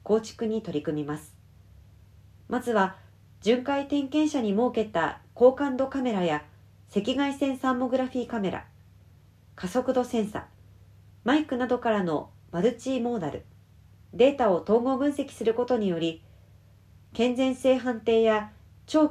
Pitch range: 160-260 Hz